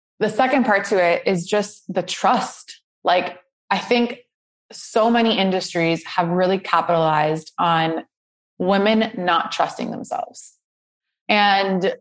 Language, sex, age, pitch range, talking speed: English, female, 20-39, 180-220 Hz, 120 wpm